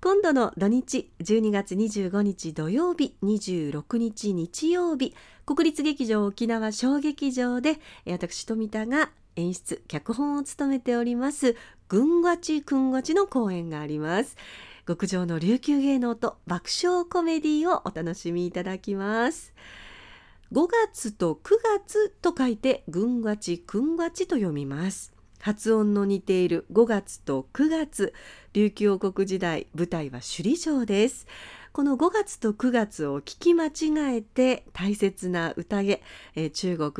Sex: female